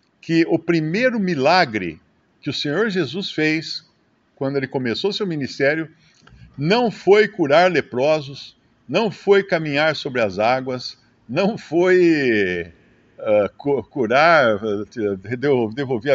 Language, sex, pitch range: Portuguese, male, 125-180 Hz